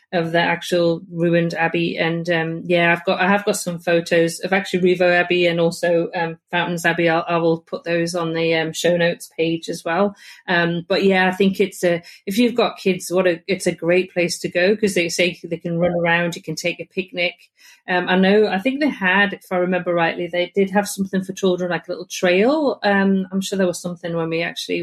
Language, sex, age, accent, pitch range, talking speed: English, female, 40-59, British, 170-195 Hz, 235 wpm